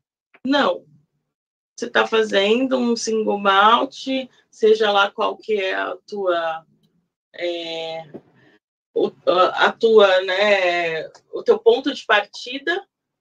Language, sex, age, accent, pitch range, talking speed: Portuguese, female, 30-49, Brazilian, 200-275 Hz, 110 wpm